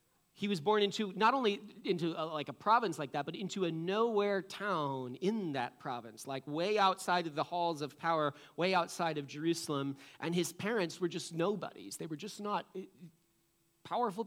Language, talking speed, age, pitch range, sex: English, 185 wpm, 30-49, 170-235 Hz, male